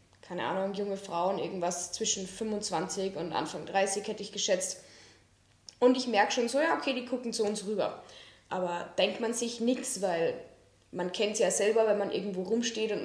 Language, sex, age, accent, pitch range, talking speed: German, female, 10-29, German, 205-265 Hz, 190 wpm